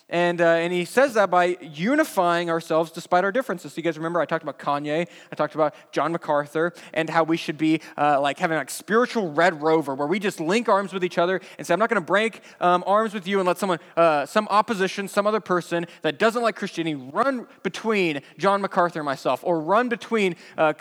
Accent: American